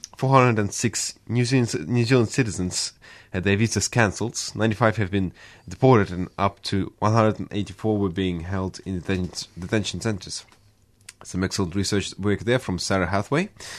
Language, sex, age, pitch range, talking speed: English, male, 20-39, 90-110 Hz, 145 wpm